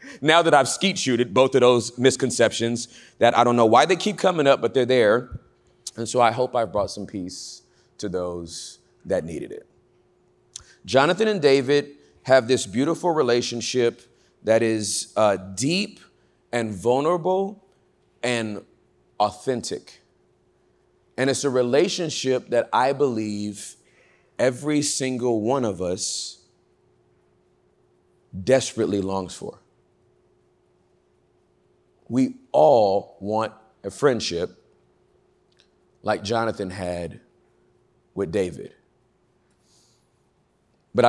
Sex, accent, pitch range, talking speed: male, American, 105-145 Hz, 110 wpm